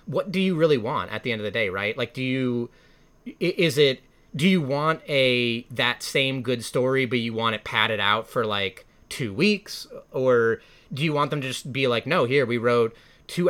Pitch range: 110-140 Hz